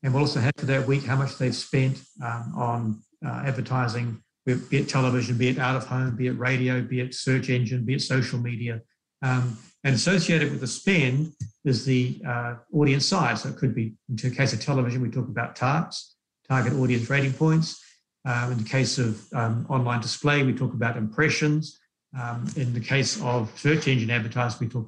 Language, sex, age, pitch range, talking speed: English, male, 60-79, 120-145 Hz, 205 wpm